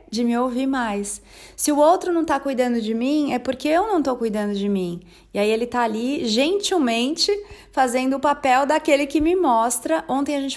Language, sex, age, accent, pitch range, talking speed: Portuguese, female, 30-49, Brazilian, 230-285 Hz, 205 wpm